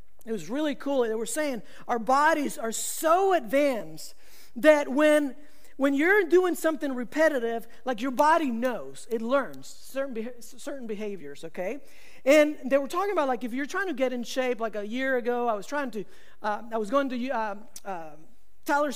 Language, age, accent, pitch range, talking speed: English, 40-59, American, 245-310 Hz, 185 wpm